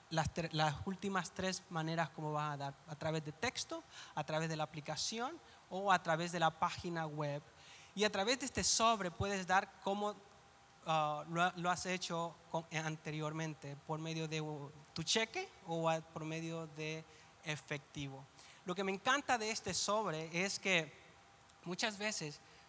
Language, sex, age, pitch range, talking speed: English, male, 30-49, 160-200 Hz, 165 wpm